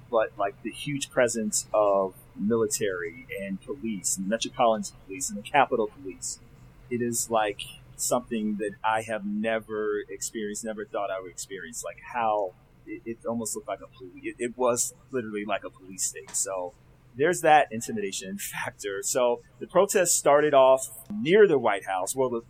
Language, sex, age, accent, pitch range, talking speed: English, male, 30-49, American, 110-135 Hz, 170 wpm